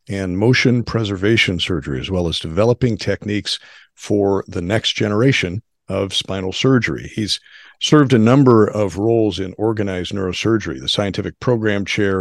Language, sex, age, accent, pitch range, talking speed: English, male, 50-69, American, 95-120 Hz, 145 wpm